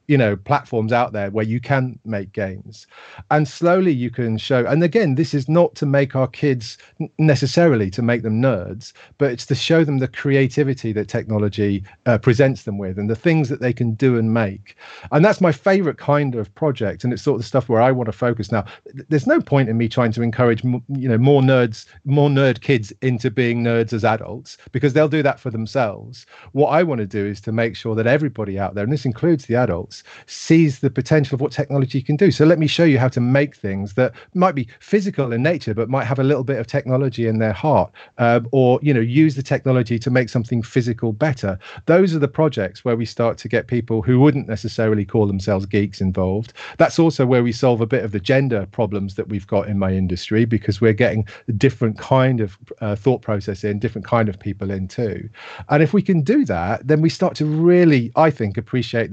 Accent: British